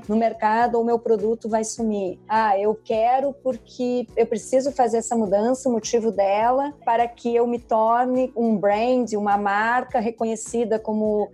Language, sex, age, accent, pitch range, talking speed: Portuguese, female, 40-59, Brazilian, 210-250 Hz, 165 wpm